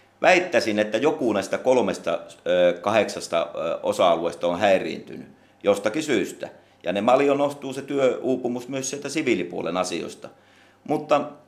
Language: Finnish